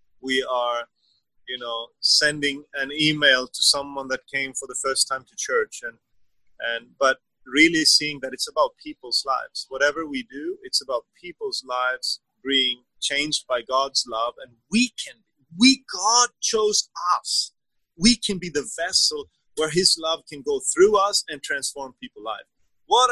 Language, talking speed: English, 165 wpm